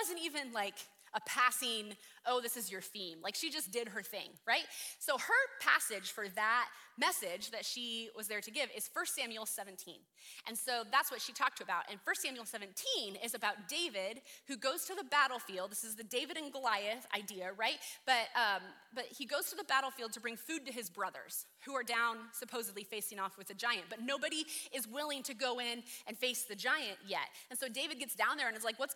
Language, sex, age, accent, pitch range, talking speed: English, female, 20-39, American, 210-285 Hz, 220 wpm